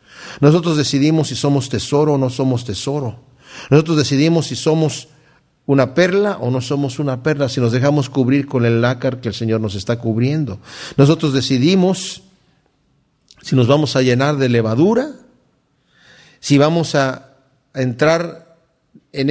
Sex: male